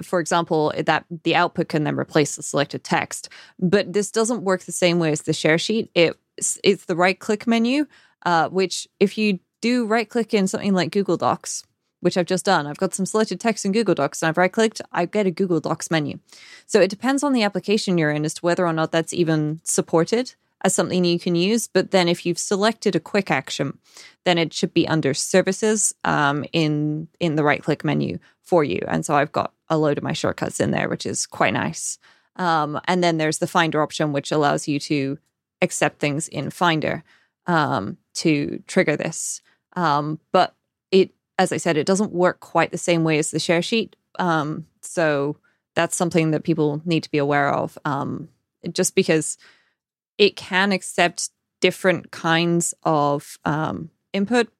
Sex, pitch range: female, 155-190 Hz